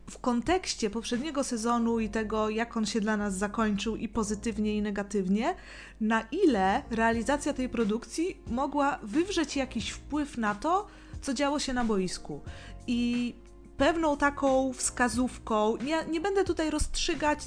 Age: 20-39